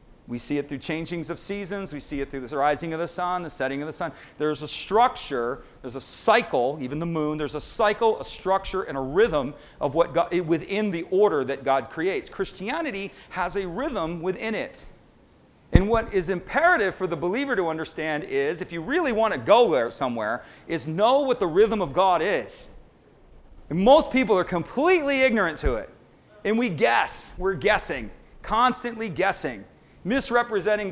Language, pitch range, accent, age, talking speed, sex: English, 175-245 Hz, American, 40-59, 185 wpm, male